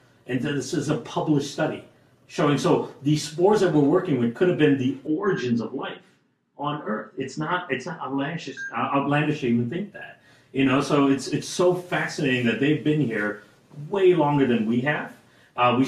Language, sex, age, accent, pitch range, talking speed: English, male, 40-59, American, 120-145 Hz, 195 wpm